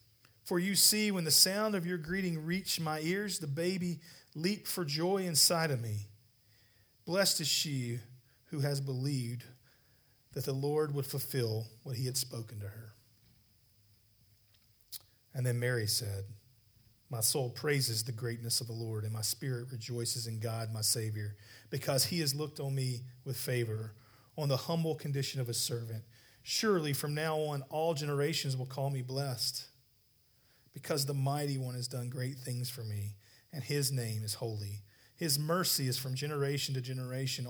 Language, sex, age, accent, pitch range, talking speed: English, male, 40-59, American, 115-145 Hz, 165 wpm